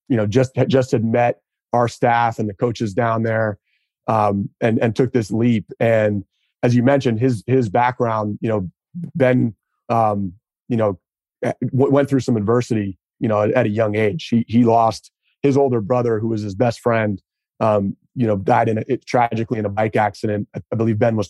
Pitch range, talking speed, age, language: 105-125 Hz, 195 wpm, 30-49, English